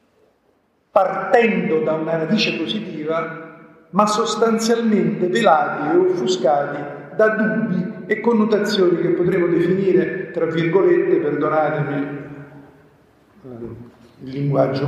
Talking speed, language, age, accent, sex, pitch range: 90 wpm, Italian, 50-69, native, male, 155-205 Hz